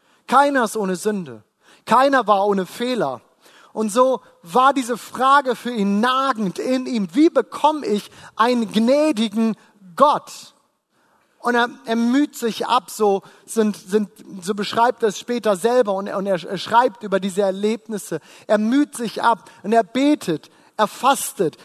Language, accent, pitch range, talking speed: German, German, 215-265 Hz, 155 wpm